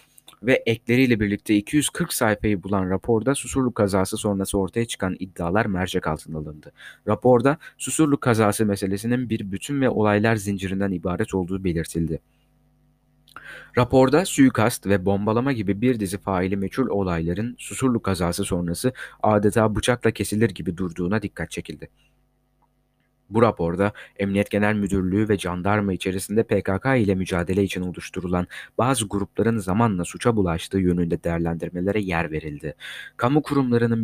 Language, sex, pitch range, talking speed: Turkish, male, 90-115 Hz, 125 wpm